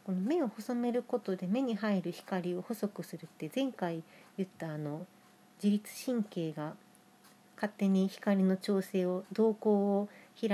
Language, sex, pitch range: Japanese, female, 185-240 Hz